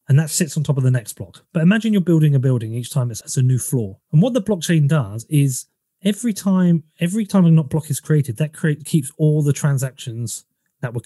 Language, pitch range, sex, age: English, 130-175 Hz, male, 30-49